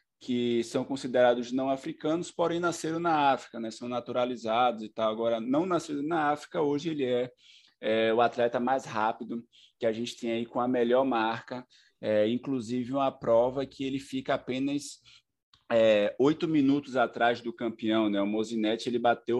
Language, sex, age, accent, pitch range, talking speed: Portuguese, male, 20-39, Brazilian, 115-135 Hz, 165 wpm